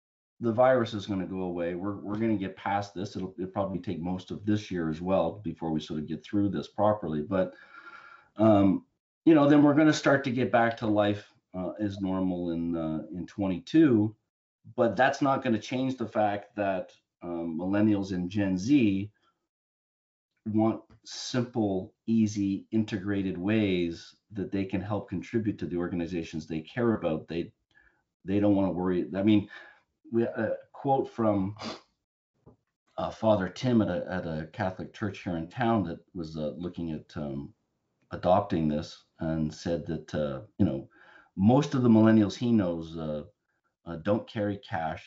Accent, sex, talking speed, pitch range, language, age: American, male, 175 wpm, 80-110 Hz, English, 40-59